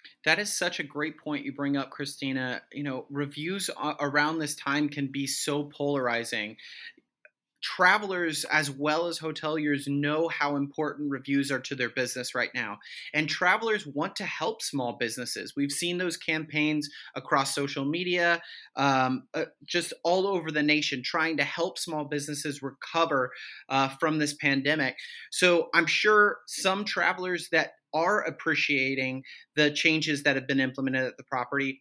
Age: 30-49